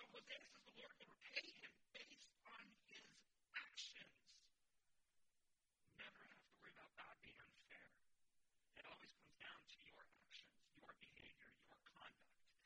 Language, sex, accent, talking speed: English, male, American, 145 wpm